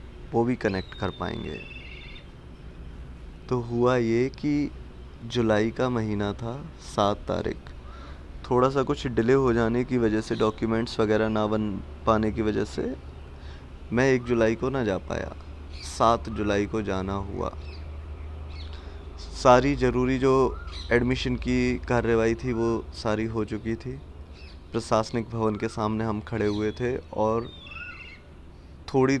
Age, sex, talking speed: 20-39, male, 135 wpm